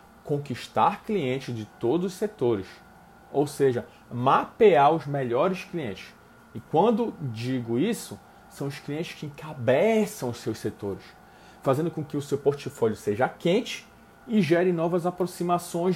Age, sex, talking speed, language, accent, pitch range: 40-59, male, 135 wpm, Portuguese, Brazilian, 125-185 Hz